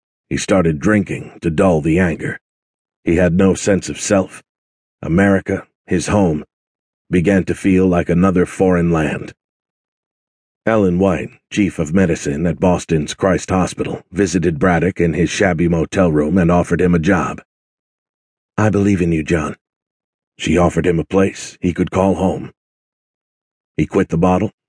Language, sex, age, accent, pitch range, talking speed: English, male, 50-69, American, 85-100 Hz, 150 wpm